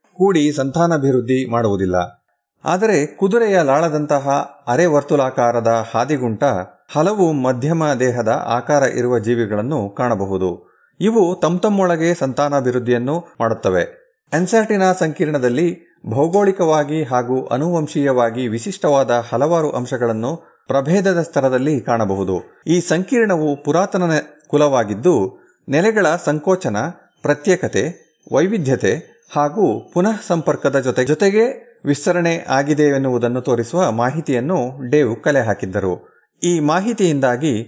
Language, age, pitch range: Kannada, 30-49, 125-170 Hz